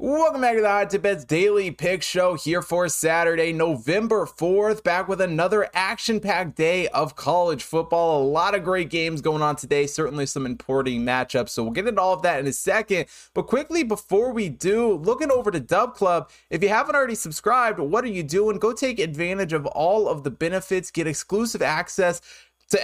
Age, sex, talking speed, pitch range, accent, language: 20-39, male, 195 wpm, 140-185 Hz, American, English